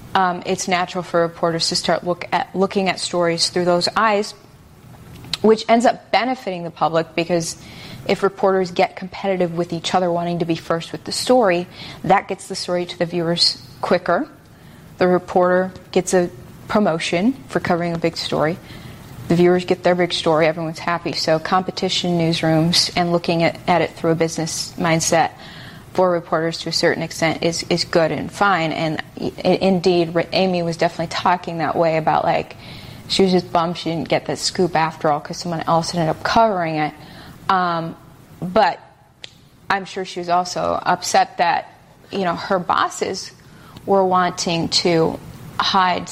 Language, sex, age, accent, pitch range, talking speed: English, female, 30-49, American, 165-185 Hz, 165 wpm